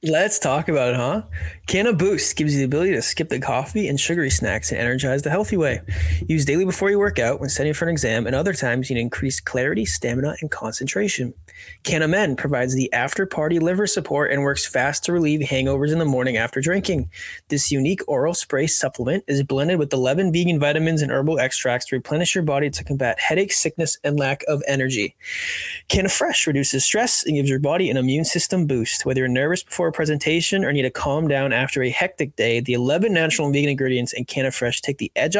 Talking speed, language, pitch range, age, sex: 210 wpm, English, 130-170 Hz, 20-39, male